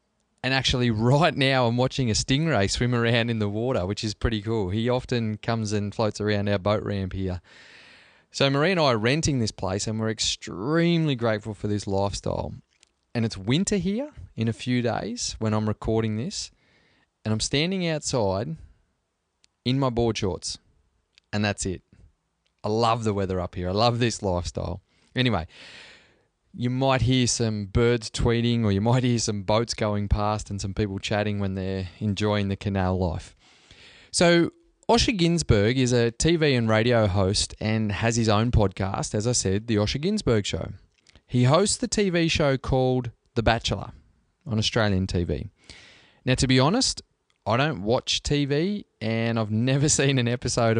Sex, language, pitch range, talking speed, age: male, English, 100-125 Hz, 170 wpm, 20-39